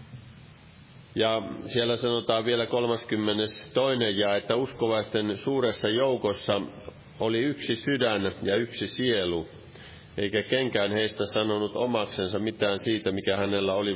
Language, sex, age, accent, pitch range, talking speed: Finnish, male, 40-59, native, 105-125 Hz, 110 wpm